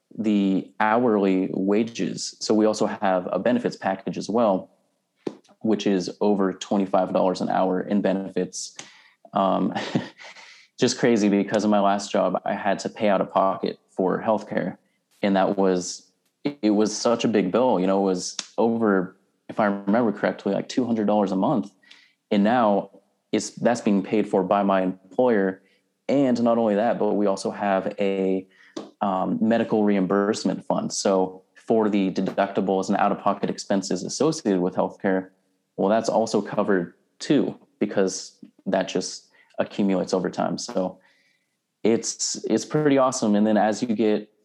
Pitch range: 95-105 Hz